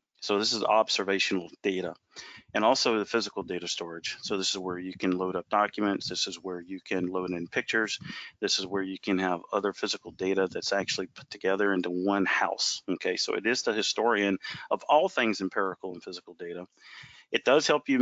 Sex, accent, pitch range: male, American, 95-105 Hz